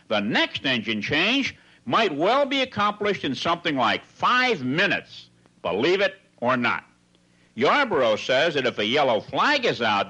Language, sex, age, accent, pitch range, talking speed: English, male, 60-79, American, 110-175 Hz, 155 wpm